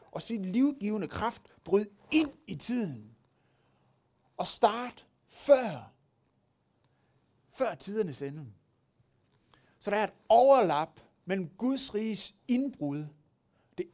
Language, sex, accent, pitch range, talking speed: Danish, male, native, 150-230 Hz, 105 wpm